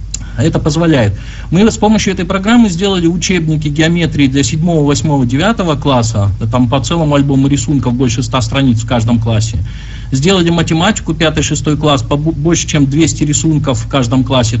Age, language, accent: 50-69, Russian, native